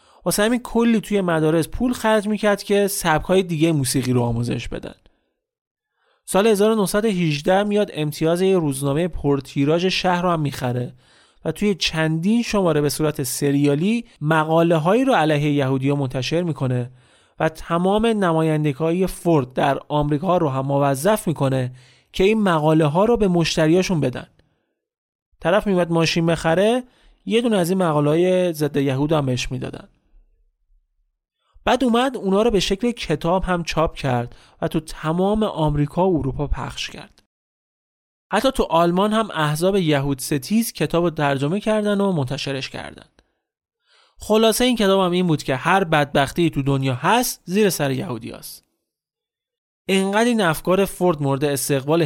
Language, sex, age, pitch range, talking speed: Persian, male, 30-49, 145-200 Hz, 135 wpm